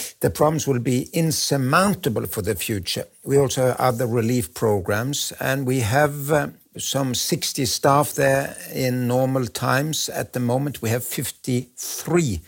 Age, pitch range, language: 60-79, 115-135 Hz, English